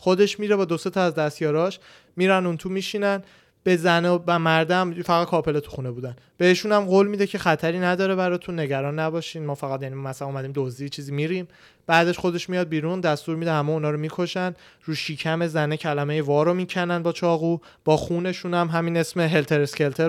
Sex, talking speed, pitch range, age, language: male, 190 wpm, 145-175 Hz, 30-49, Persian